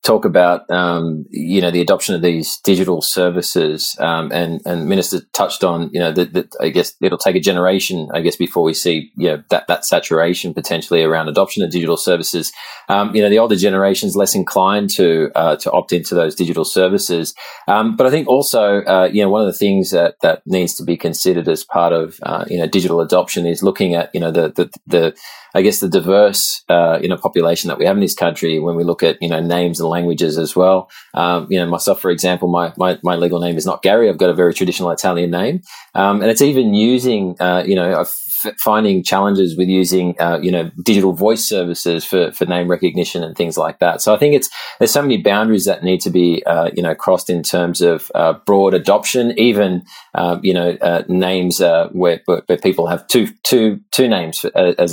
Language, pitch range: English, 85-100 Hz